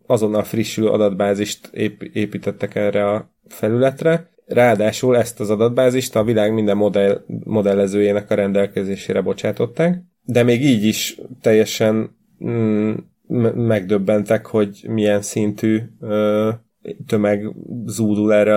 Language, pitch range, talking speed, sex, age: Hungarian, 105-115 Hz, 95 wpm, male, 30-49